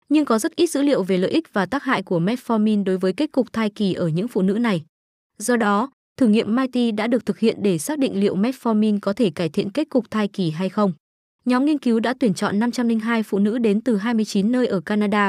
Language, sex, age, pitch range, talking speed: Vietnamese, female, 20-39, 195-245 Hz, 250 wpm